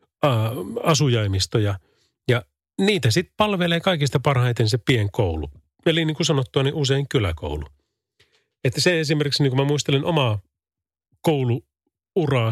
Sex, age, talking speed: male, 30-49, 120 wpm